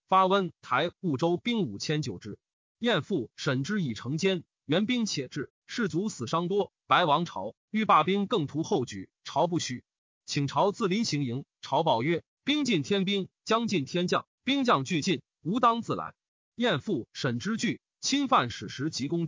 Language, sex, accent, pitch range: Chinese, male, native, 145-215 Hz